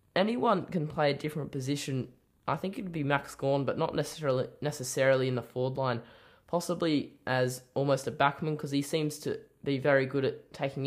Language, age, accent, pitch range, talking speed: English, 10-29, Australian, 130-150 Hz, 195 wpm